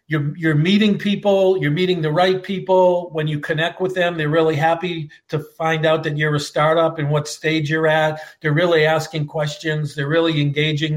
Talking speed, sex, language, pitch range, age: 195 wpm, male, English, 150-180 Hz, 50-69